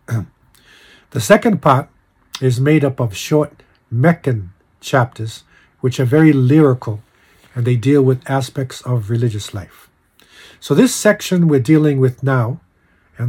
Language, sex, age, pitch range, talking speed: English, male, 50-69, 120-150 Hz, 135 wpm